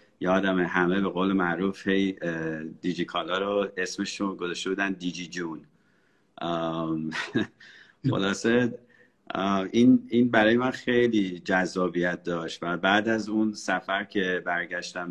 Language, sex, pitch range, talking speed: Persian, male, 90-110 Hz, 110 wpm